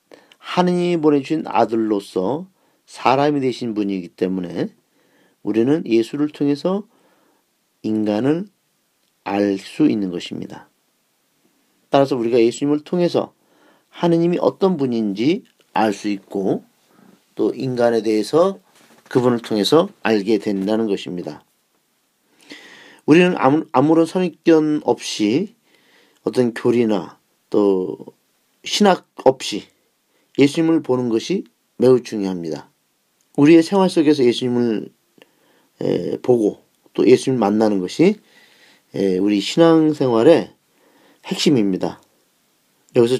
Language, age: Korean, 40-59